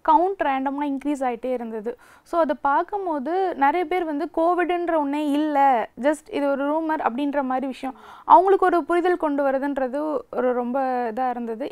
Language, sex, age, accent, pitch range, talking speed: Tamil, female, 20-39, native, 275-330 Hz, 155 wpm